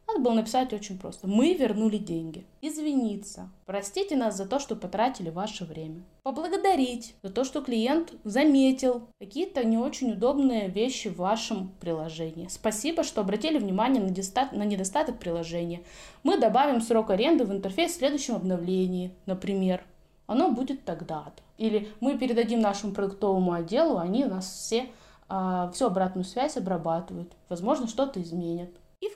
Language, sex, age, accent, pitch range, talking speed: Russian, female, 20-39, native, 190-260 Hz, 150 wpm